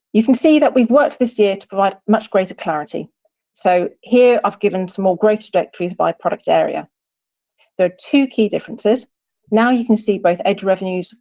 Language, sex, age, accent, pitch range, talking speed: English, female, 40-59, British, 175-220 Hz, 195 wpm